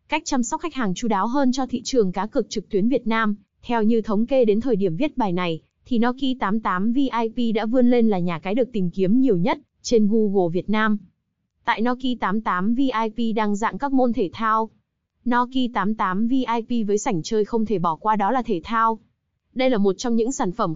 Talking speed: 225 wpm